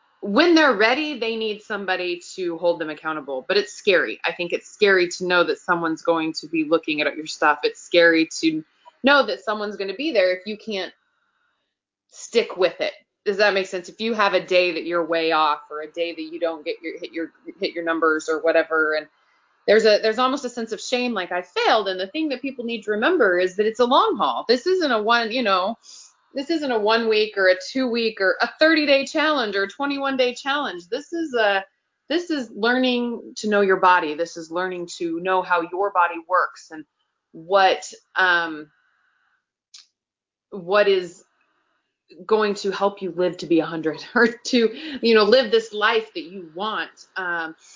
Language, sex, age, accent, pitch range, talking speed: English, female, 20-39, American, 180-270 Hz, 210 wpm